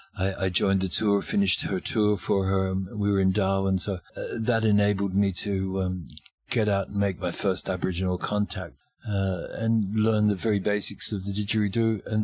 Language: English